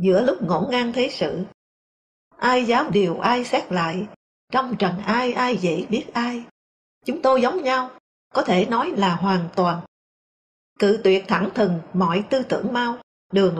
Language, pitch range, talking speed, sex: English, 190-250 Hz, 170 wpm, female